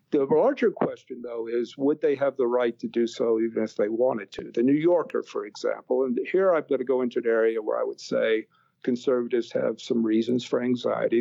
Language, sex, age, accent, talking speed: English, male, 50-69, American, 225 wpm